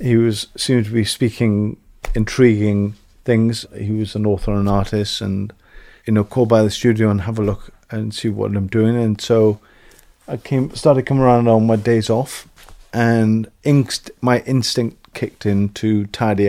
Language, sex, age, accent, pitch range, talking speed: English, male, 40-59, British, 105-120 Hz, 180 wpm